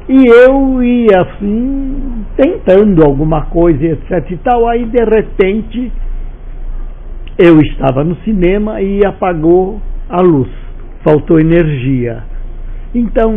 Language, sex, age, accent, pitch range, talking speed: Portuguese, male, 60-79, Brazilian, 130-200 Hz, 110 wpm